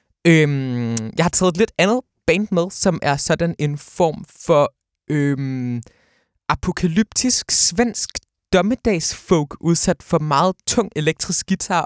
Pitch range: 135-175 Hz